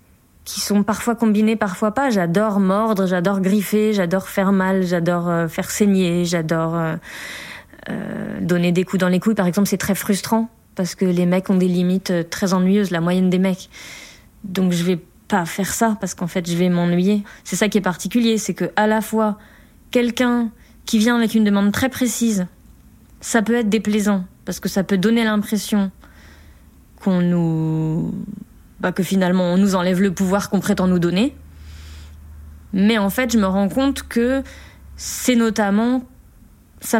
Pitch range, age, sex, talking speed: 185-220 Hz, 20-39, female, 170 wpm